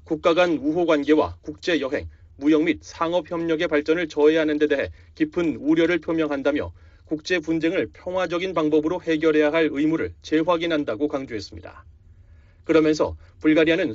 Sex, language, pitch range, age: male, Korean, 145-170 Hz, 40-59